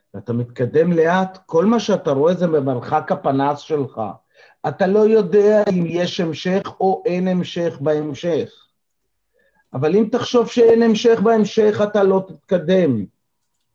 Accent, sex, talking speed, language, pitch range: native, male, 130 wpm, Hebrew, 155-230 Hz